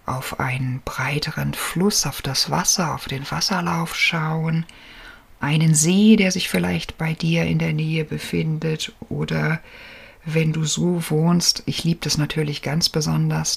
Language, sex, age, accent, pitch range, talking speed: German, female, 50-69, German, 140-170 Hz, 145 wpm